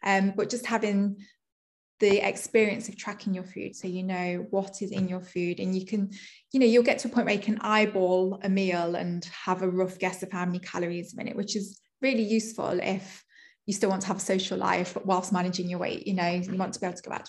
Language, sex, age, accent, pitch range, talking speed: English, female, 20-39, British, 185-215 Hz, 250 wpm